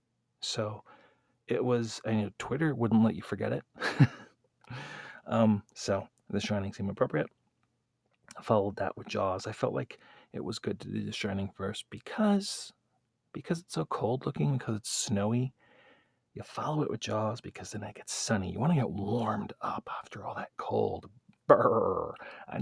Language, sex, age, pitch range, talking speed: English, male, 40-59, 105-135 Hz, 170 wpm